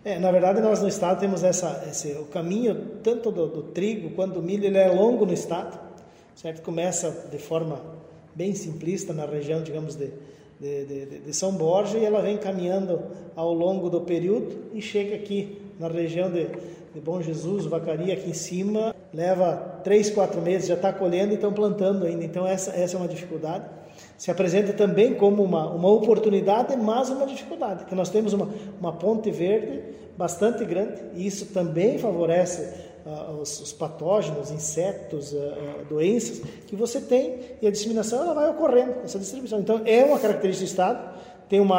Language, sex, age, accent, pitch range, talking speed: Portuguese, male, 20-39, Brazilian, 165-205 Hz, 180 wpm